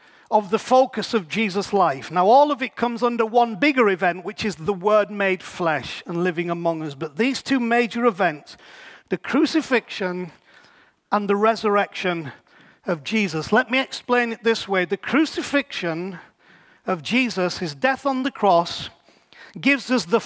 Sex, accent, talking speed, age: male, British, 165 wpm, 40-59